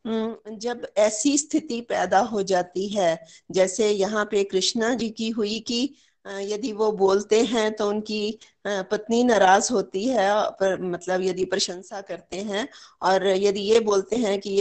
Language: Hindi